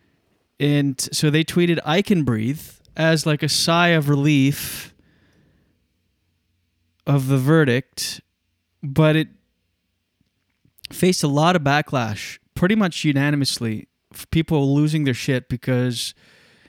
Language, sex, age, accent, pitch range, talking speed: English, male, 20-39, American, 125-155 Hz, 110 wpm